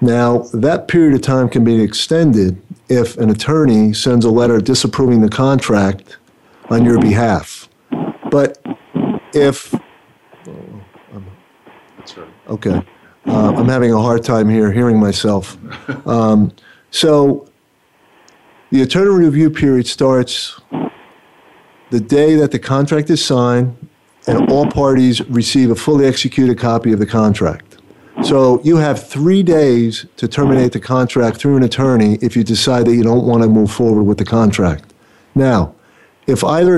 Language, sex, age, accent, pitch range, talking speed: English, male, 50-69, American, 115-135 Hz, 140 wpm